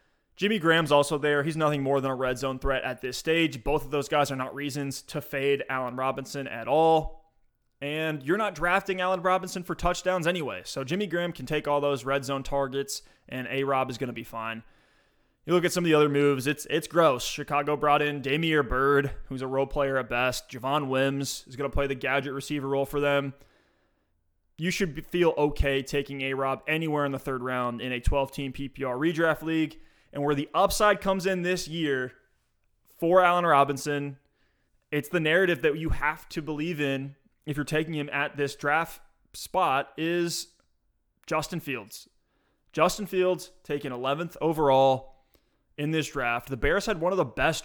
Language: English